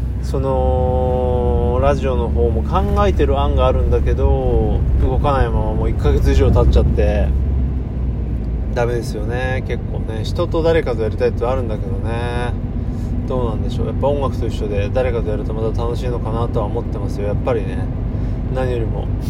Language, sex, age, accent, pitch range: Japanese, male, 20-39, native, 100-125 Hz